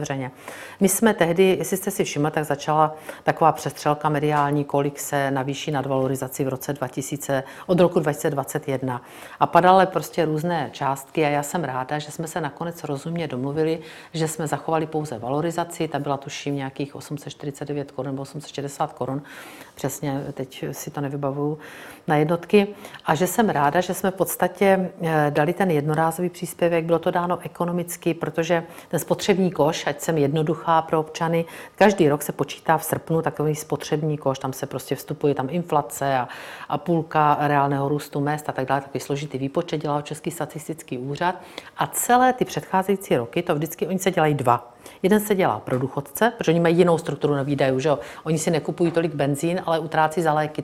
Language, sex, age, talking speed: Czech, female, 50-69, 175 wpm